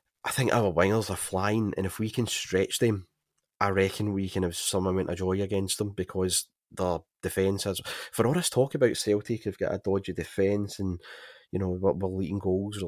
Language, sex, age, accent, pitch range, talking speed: English, male, 30-49, British, 95-115 Hz, 215 wpm